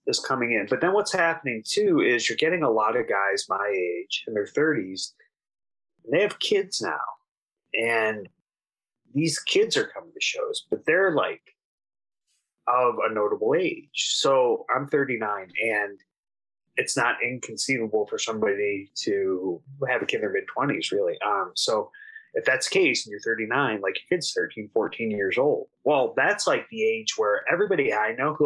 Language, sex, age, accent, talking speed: English, male, 30-49, American, 175 wpm